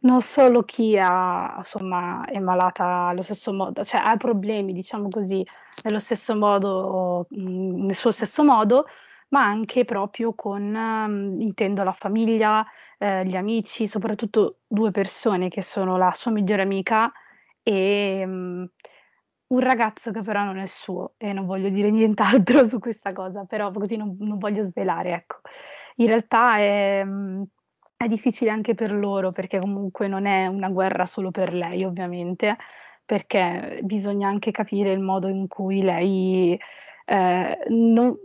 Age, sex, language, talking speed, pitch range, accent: 20-39, female, Italian, 150 wpm, 190-225 Hz, native